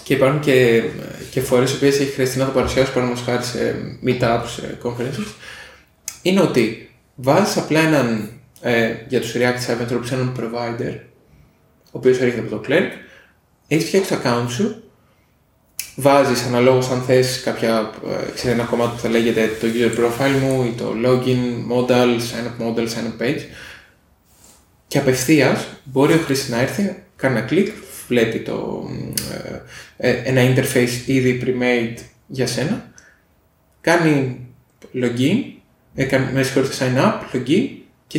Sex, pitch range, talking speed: male, 120-145 Hz, 140 wpm